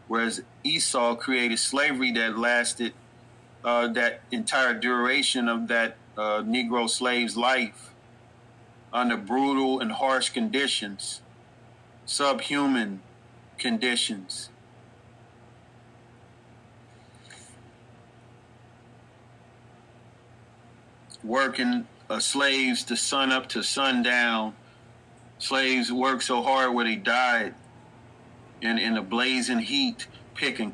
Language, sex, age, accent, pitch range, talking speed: English, male, 40-59, American, 120-125 Hz, 85 wpm